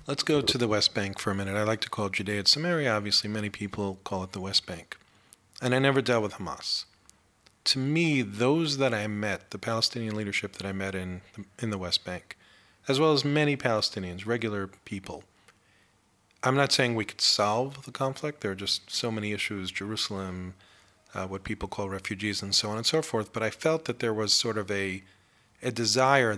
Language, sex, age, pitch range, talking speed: English, male, 40-59, 100-120 Hz, 210 wpm